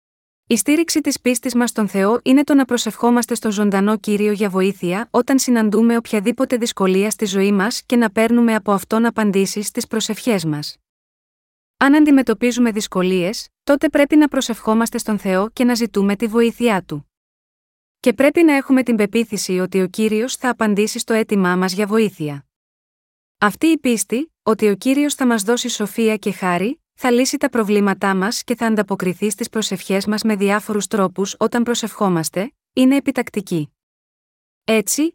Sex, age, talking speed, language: female, 20-39, 160 wpm, Greek